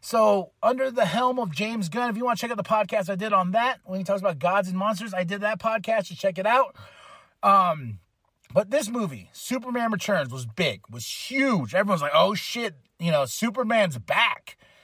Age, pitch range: 30-49, 165-225 Hz